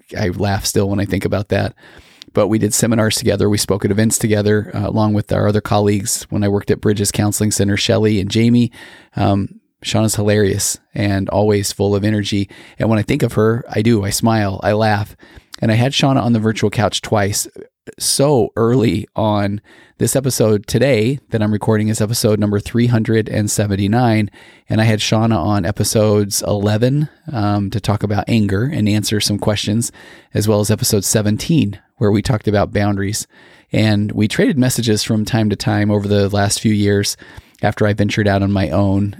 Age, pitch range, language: 30-49, 100-110 Hz, English